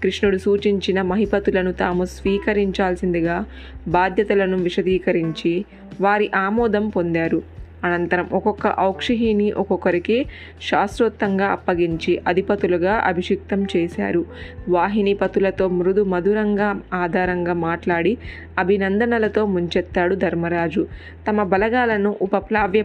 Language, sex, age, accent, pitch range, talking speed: Telugu, female, 20-39, native, 175-205 Hz, 80 wpm